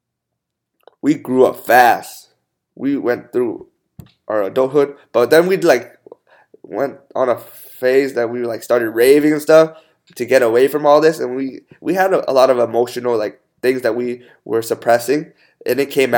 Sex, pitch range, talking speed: male, 125-155 Hz, 180 wpm